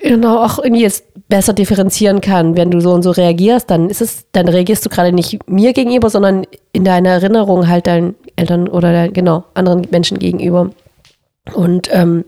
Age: 30-49